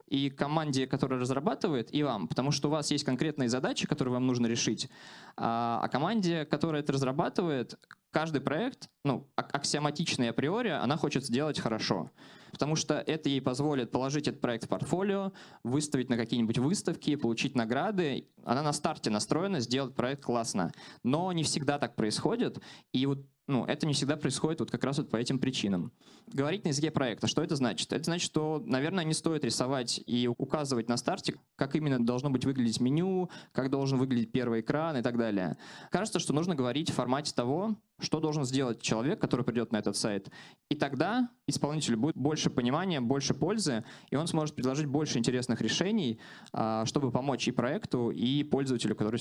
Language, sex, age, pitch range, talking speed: Russian, male, 20-39, 125-155 Hz, 175 wpm